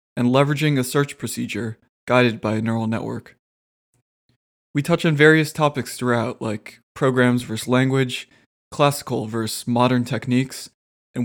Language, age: English, 20-39